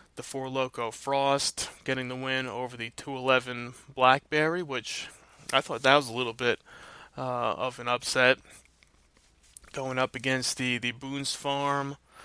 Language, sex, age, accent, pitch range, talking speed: English, male, 20-39, American, 125-140 Hz, 145 wpm